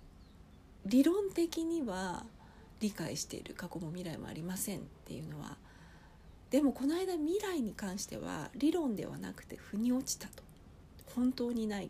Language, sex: Japanese, female